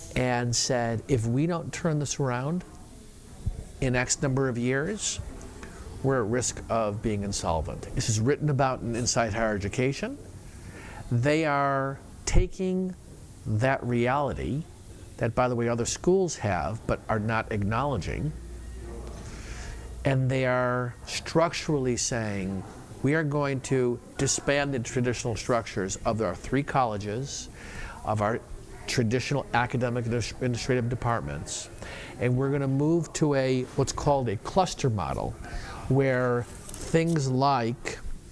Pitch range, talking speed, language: 110-140 Hz, 130 wpm, English